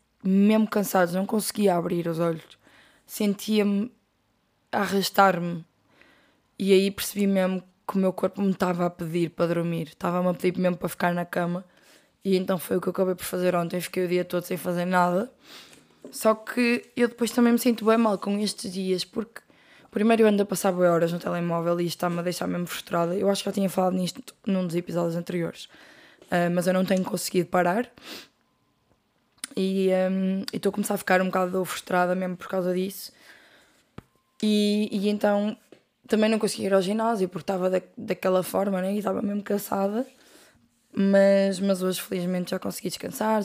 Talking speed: 185 wpm